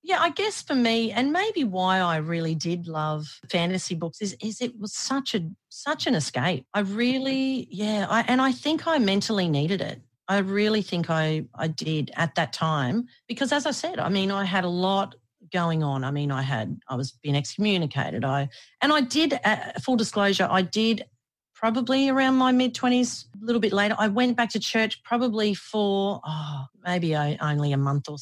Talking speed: 195 wpm